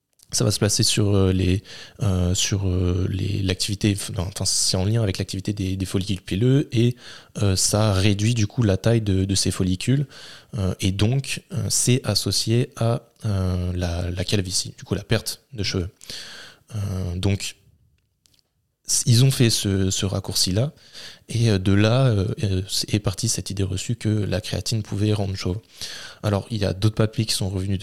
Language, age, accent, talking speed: French, 20-39, French, 175 wpm